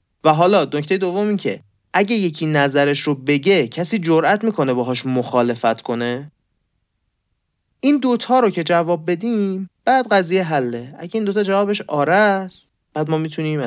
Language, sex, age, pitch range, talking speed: Persian, male, 30-49, 120-175 Hz, 150 wpm